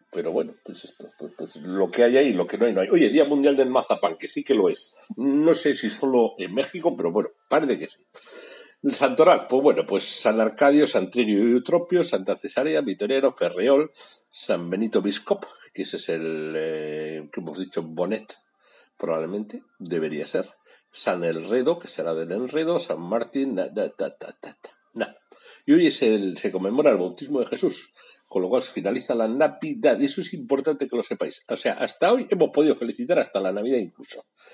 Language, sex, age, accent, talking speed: Spanish, male, 60-79, Spanish, 205 wpm